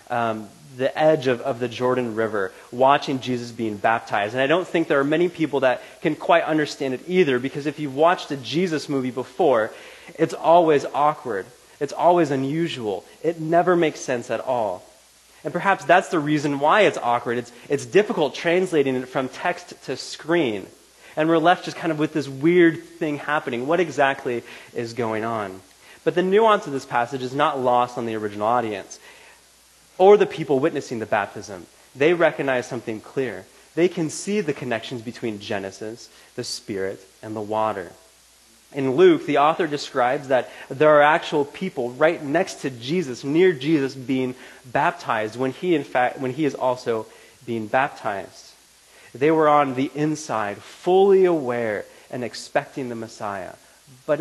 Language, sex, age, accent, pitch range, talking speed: English, male, 20-39, American, 120-160 Hz, 170 wpm